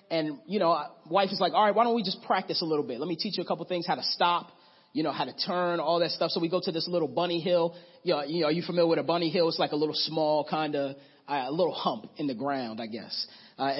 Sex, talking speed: male, 310 wpm